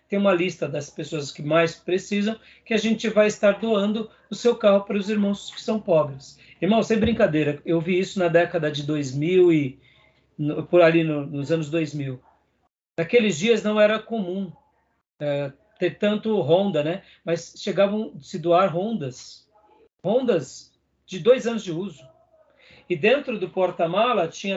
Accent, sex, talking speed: Brazilian, male, 165 wpm